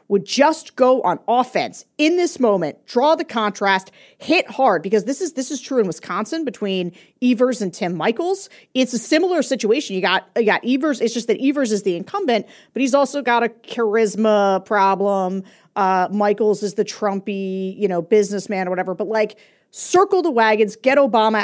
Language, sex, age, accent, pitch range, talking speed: English, female, 40-59, American, 190-265 Hz, 185 wpm